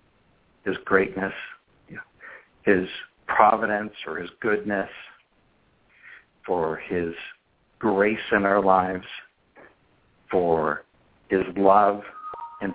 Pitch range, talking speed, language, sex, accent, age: 95-110 Hz, 80 wpm, English, male, American, 60-79